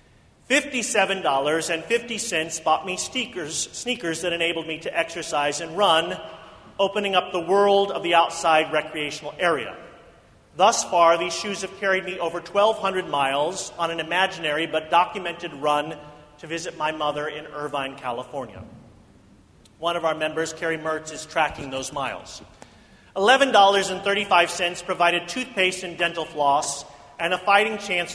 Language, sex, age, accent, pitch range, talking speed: English, male, 40-59, American, 150-185 Hz, 135 wpm